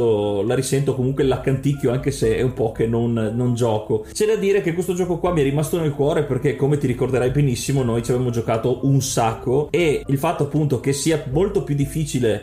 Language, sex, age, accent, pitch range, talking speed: Italian, male, 30-49, native, 120-150 Hz, 215 wpm